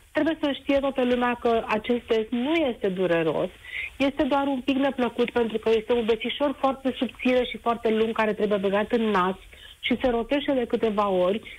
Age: 40-59